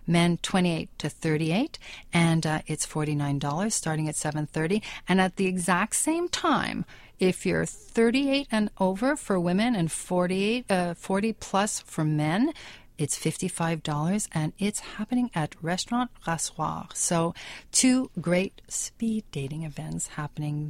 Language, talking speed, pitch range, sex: English, 130 wpm, 160-210 Hz, female